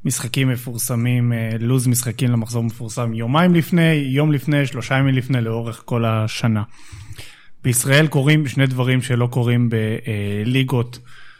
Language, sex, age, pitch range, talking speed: Hebrew, male, 30-49, 120-150 Hz, 115 wpm